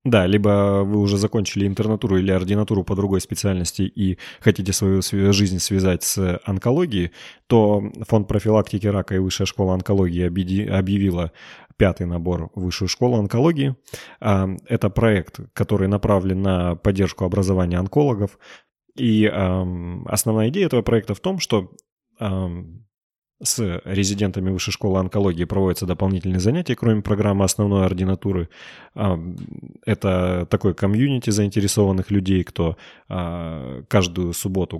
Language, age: Russian, 20-39